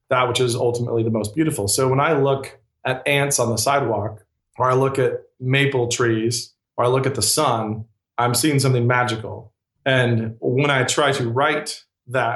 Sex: male